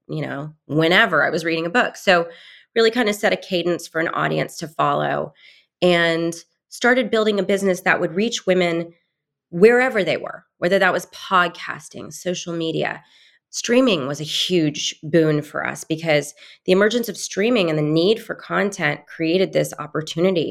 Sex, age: female, 20-39